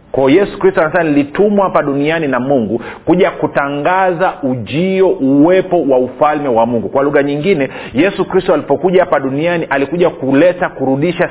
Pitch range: 135-175 Hz